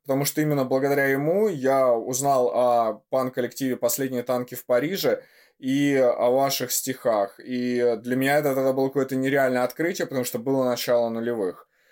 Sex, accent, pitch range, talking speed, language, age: male, native, 125-150 Hz, 155 wpm, Russian, 20-39